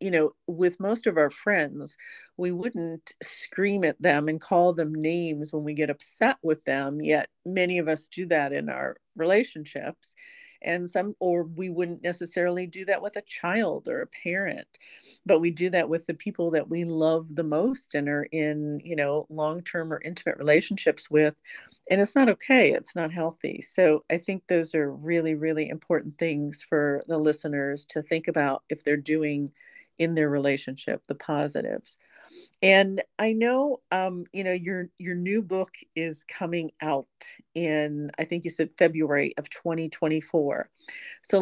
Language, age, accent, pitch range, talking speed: English, 40-59, American, 155-185 Hz, 175 wpm